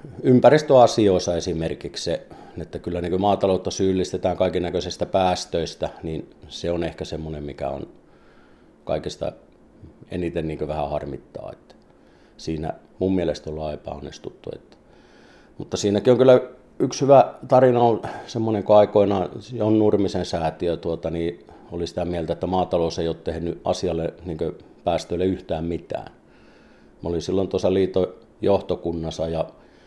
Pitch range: 80-100 Hz